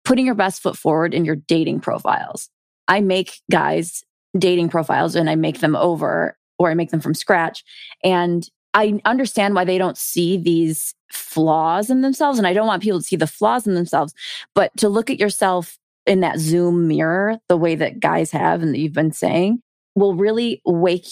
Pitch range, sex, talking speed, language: 170-210 Hz, female, 195 wpm, English